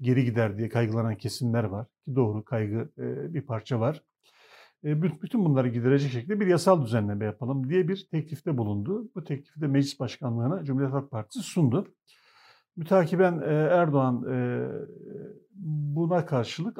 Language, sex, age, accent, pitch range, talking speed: Turkish, male, 50-69, native, 130-175 Hz, 130 wpm